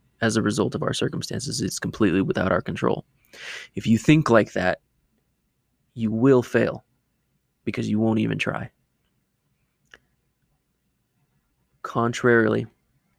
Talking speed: 115 wpm